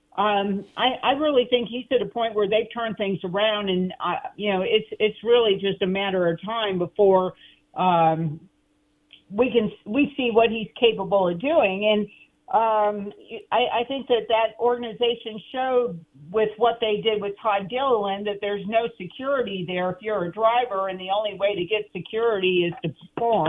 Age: 50-69